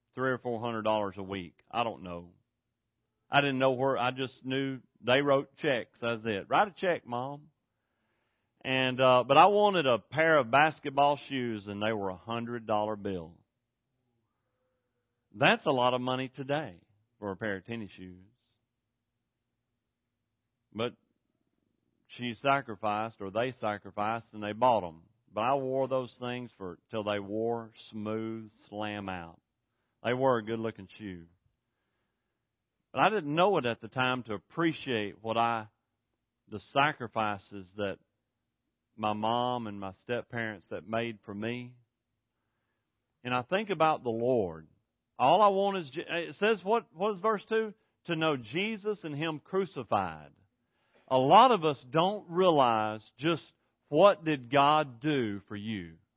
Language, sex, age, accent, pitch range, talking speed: English, male, 40-59, American, 110-135 Hz, 155 wpm